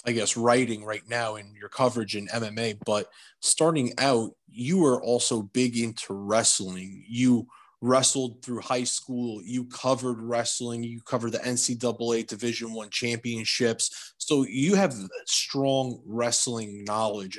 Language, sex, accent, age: English, male, American, 20-39